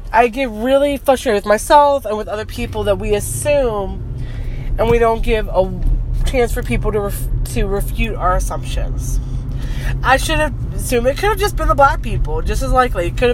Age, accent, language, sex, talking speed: 20-39, American, English, female, 195 wpm